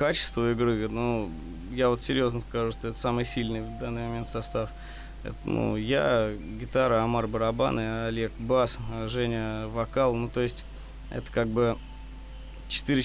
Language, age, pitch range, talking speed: Russian, 20-39, 115-130 Hz, 145 wpm